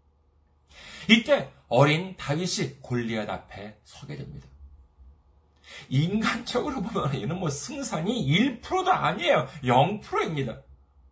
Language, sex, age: Korean, male, 40-59